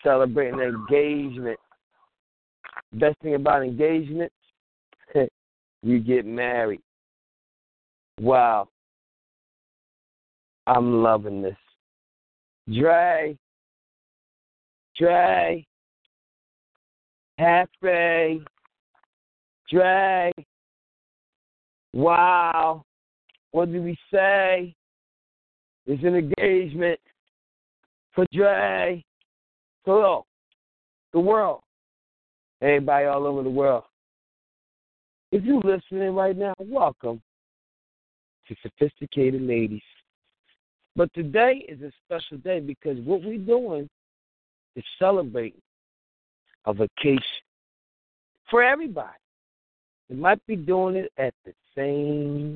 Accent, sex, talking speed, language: American, male, 80 wpm, English